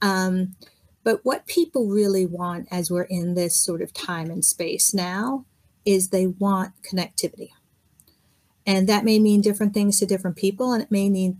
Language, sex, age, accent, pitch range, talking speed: English, female, 40-59, American, 185-225 Hz, 175 wpm